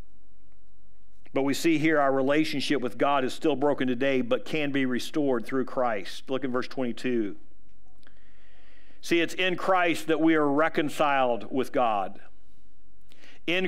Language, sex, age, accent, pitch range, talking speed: English, male, 50-69, American, 130-165 Hz, 145 wpm